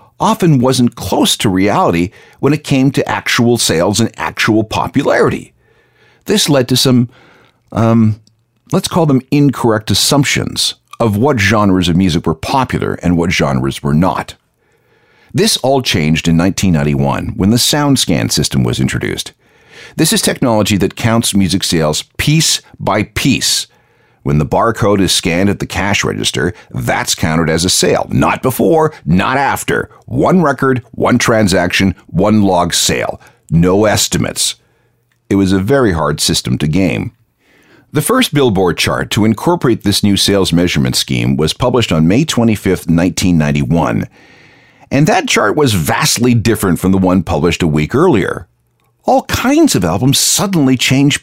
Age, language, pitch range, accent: 50-69, English, 85-130 Hz, American